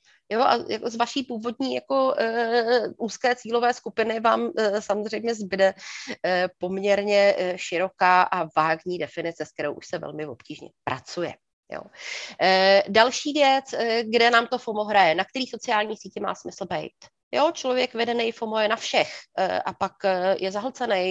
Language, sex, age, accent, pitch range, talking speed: Czech, female, 30-49, native, 195-245 Hz, 160 wpm